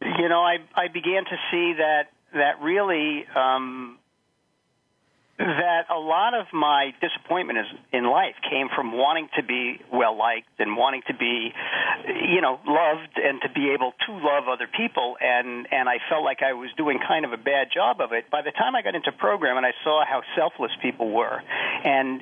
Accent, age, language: American, 50-69, English